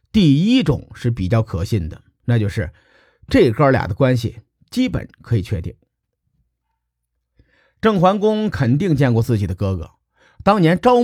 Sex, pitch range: male, 110-165 Hz